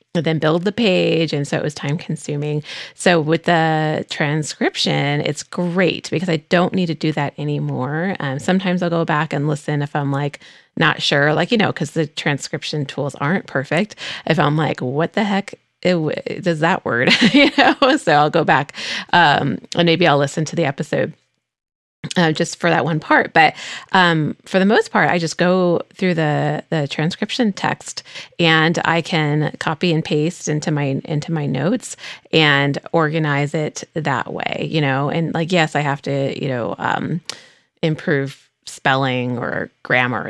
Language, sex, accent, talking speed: English, female, American, 180 wpm